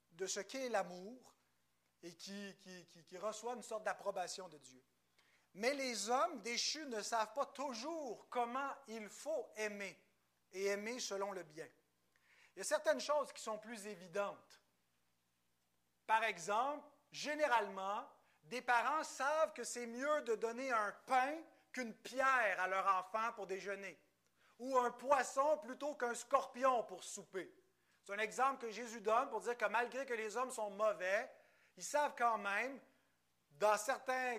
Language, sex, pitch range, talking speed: French, male, 185-260 Hz, 155 wpm